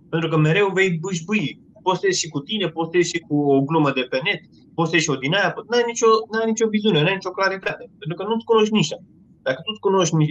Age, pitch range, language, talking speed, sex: 20-39, 155-195 Hz, Romanian, 255 wpm, male